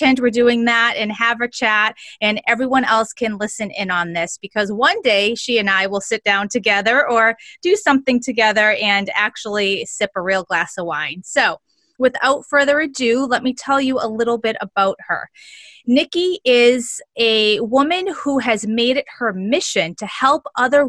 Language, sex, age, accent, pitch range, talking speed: English, female, 30-49, American, 215-280 Hz, 180 wpm